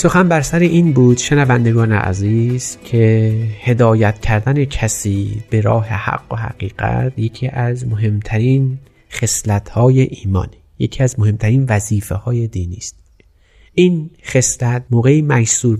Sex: male